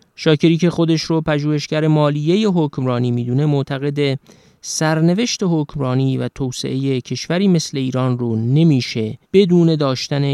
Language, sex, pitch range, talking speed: Persian, male, 130-155 Hz, 120 wpm